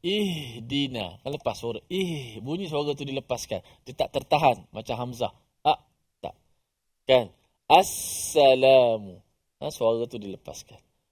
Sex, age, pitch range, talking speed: male, 20-39, 125-175 Hz, 120 wpm